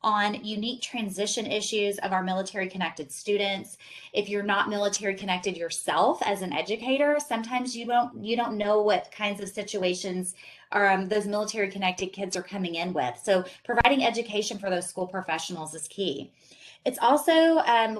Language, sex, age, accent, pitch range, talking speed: English, female, 20-39, American, 180-225 Hz, 160 wpm